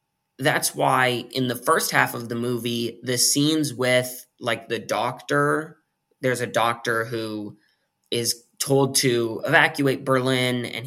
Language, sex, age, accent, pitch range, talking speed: English, male, 20-39, American, 120-140 Hz, 140 wpm